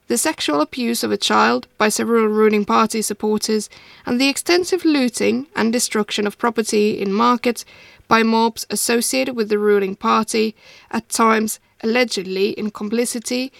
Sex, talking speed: female, 145 wpm